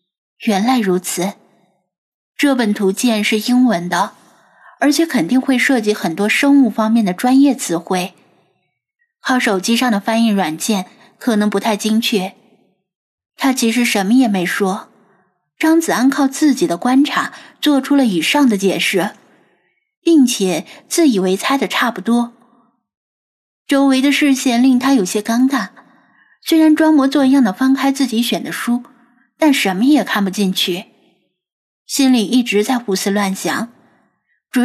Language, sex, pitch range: Chinese, female, 195-270 Hz